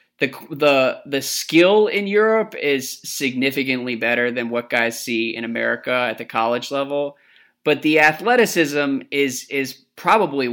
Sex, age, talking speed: male, 20-39, 140 wpm